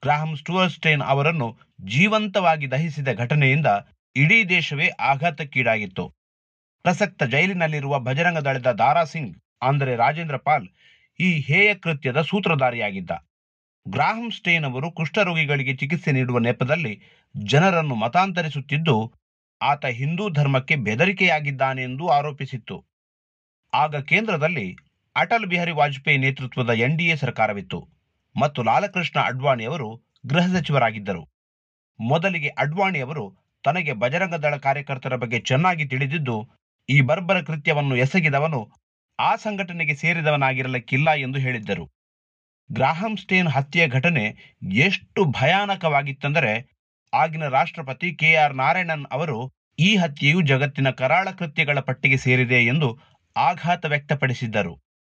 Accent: native